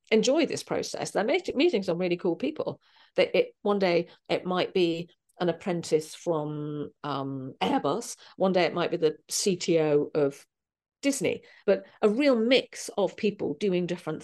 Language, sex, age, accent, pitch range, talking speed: English, female, 40-59, British, 170-210 Hz, 160 wpm